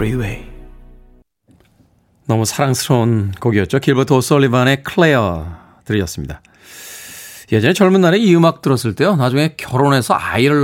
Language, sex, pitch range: Korean, male, 115-160 Hz